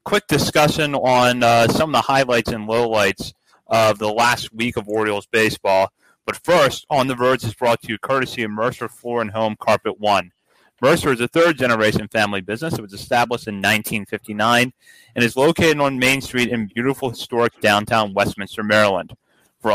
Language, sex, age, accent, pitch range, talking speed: English, male, 30-49, American, 110-135 Hz, 175 wpm